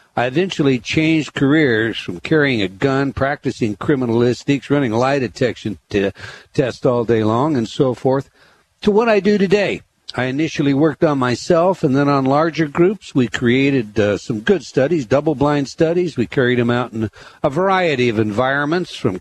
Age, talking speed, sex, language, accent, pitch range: 60-79, 165 wpm, male, English, American, 125-165 Hz